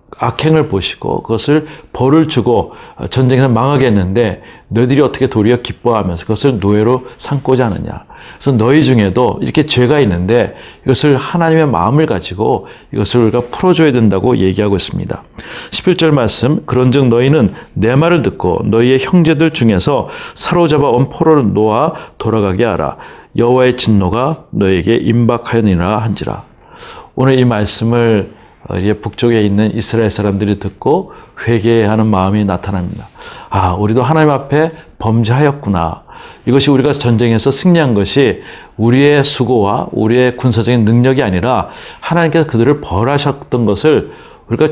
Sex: male